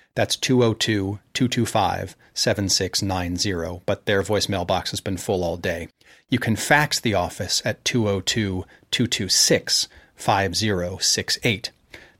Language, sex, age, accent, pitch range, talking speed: English, male, 40-59, American, 100-120 Hz, 90 wpm